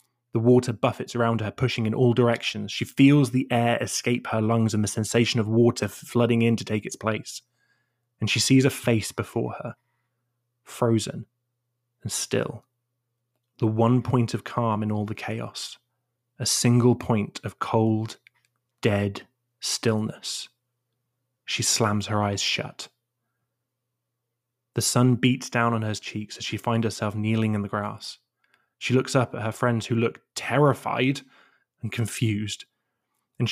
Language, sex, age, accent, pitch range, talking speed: English, male, 20-39, British, 110-125 Hz, 150 wpm